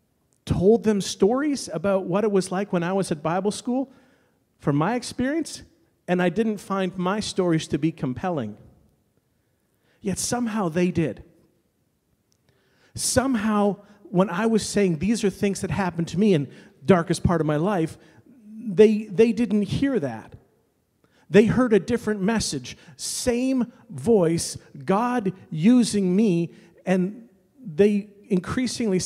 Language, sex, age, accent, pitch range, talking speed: English, male, 40-59, American, 170-220 Hz, 140 wpm